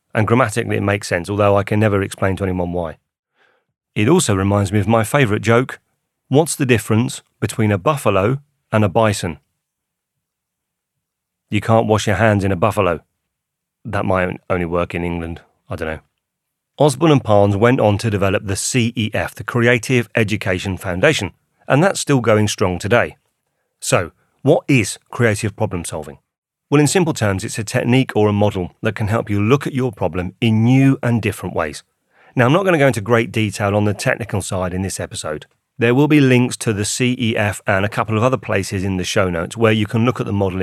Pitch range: 95-125 Hz